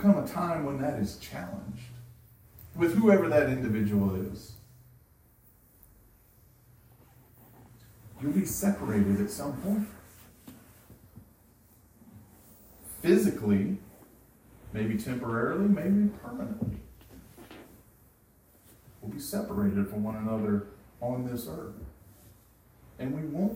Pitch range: 100-135 Hz